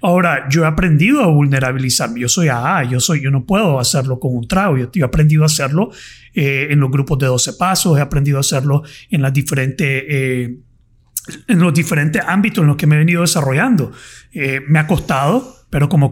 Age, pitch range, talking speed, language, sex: 30-49, 135-180 Hz, 210 wpm, Spanish, male